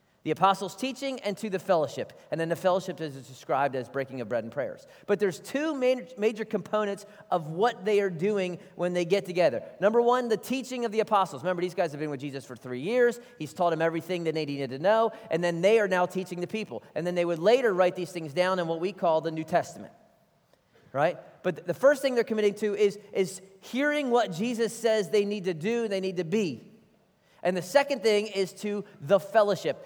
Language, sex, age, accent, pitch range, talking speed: English, male, 30-49, American, 175-215 Hz, 230 wpm